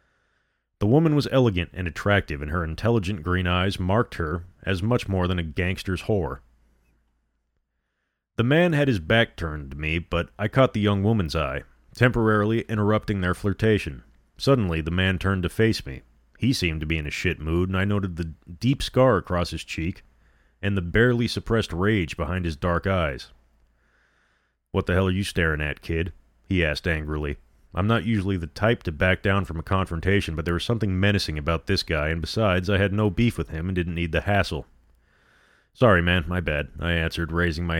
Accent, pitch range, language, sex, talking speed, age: American, 80-105 Hz, English, male, 195 wpm, 30-49